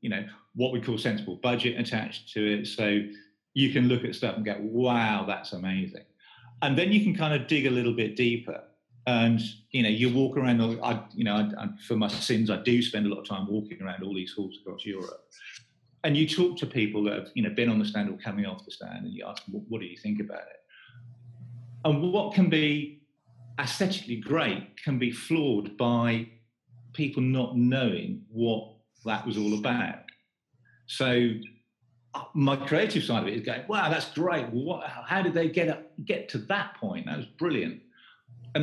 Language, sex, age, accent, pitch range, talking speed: English, male, 40-59, British, 115-155 Hz, 195 wpm